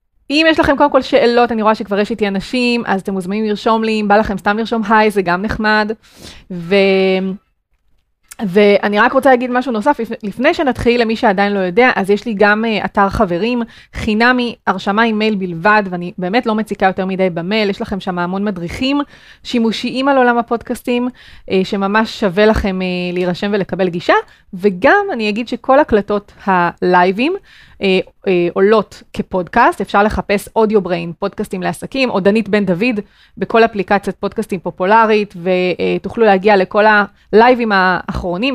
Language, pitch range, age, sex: Hebrew, 195-240 Hz, 20-39, female